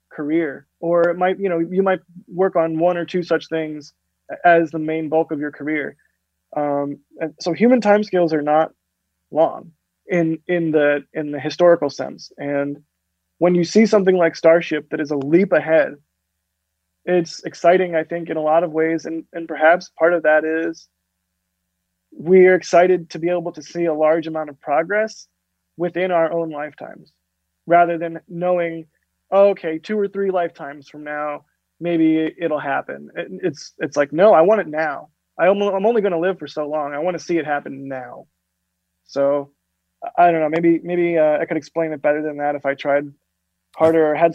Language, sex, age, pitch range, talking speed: Danish, male, 20-39, 145-180 Hz, 190 wpm